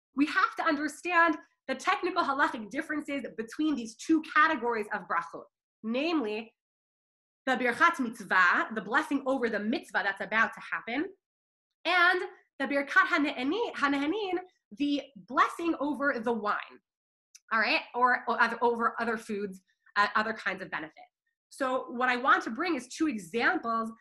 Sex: female